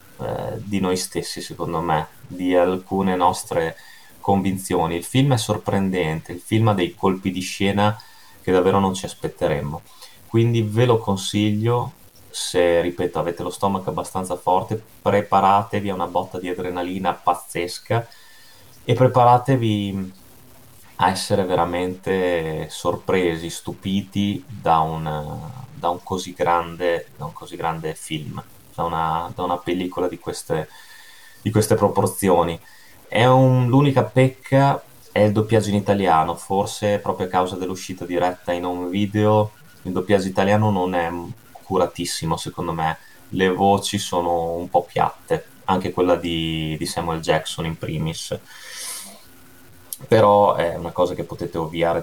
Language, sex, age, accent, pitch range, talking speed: Italian, male, 20-39, native, 85-105 Hz, 135 wpm